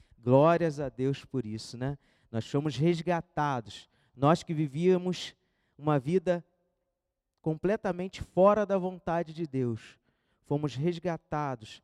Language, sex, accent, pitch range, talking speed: Portuguese, male, Brazilian, 130-180 Hz, 110 wpm